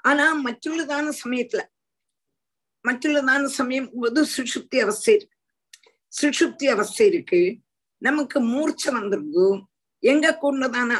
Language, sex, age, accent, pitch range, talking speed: Tamil, female, 50-69, native, 230-295 Hz, 95 wpm